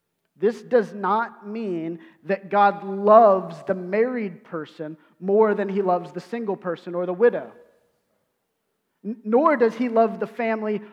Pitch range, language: 185-225 Hz, English